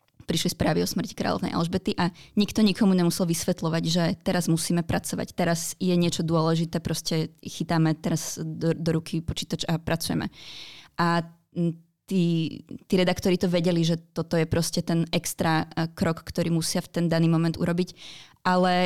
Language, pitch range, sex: Czech, 165-185 Hz, female